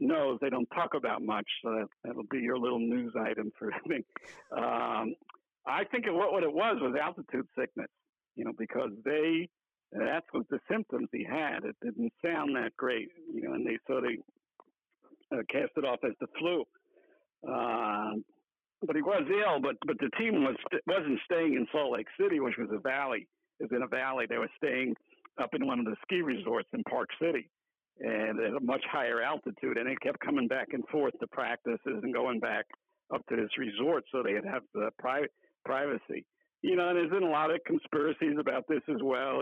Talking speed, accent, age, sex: 200 wpm, American, 60-79, male